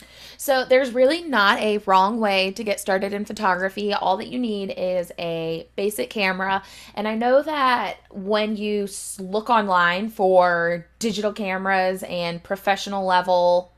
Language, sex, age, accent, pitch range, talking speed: English, female, 20-39, American, 180-220 Hz, 150 wpm